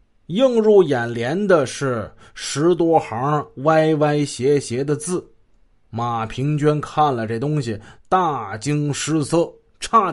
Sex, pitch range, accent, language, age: male, 125-185 Hz, native, Chinese, 30-49